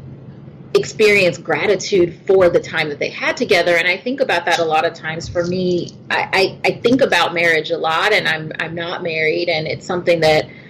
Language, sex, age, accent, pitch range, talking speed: English, female, 30-49, American, 160-190 Hz, 210 wpm